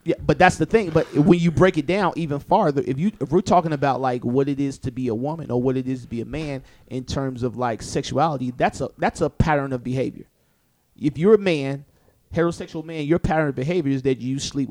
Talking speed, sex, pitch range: 250 wpm, male, 130-165 Hz